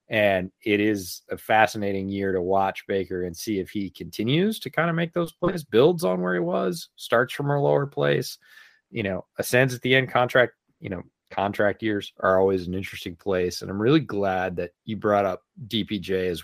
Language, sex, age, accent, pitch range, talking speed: English, male, 30-49, American, 95-115 Hz, 205 wpm